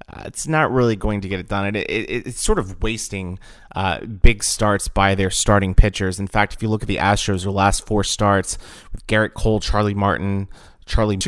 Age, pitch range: 30-49, 95-110 Hz